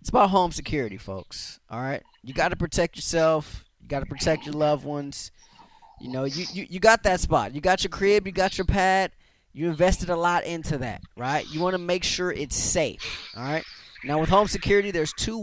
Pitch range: 140-180 Hz